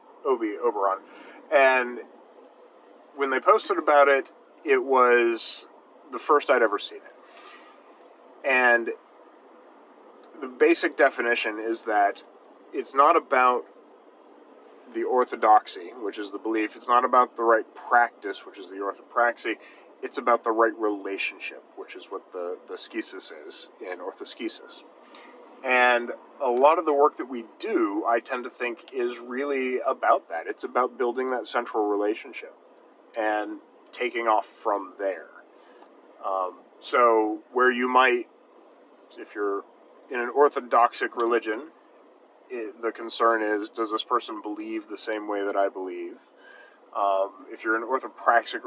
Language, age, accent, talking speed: English, 30-49, American, 140 wpm